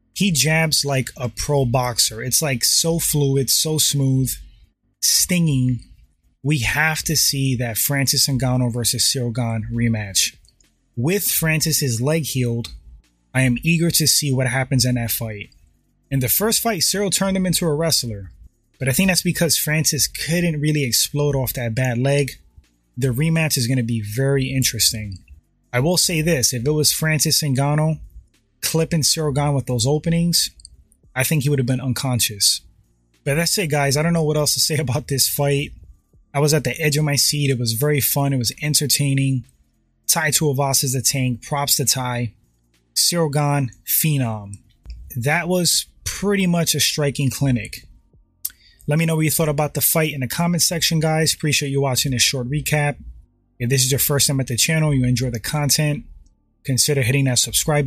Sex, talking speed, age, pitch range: male, 180 wpm, 20-39, 120-150 Hz